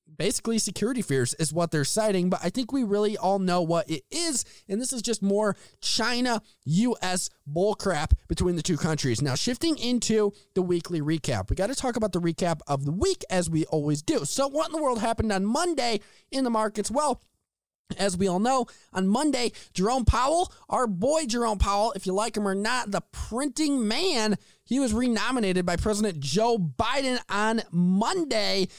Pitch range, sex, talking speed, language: 180-235 Hz, male, 190 wpm, English